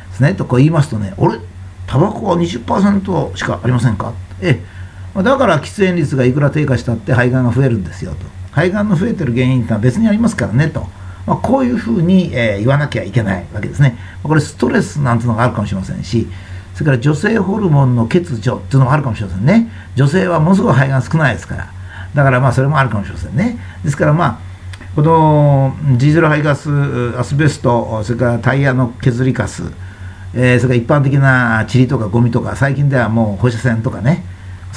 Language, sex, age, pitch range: Japanese, male, 50-69, 105-150 Hz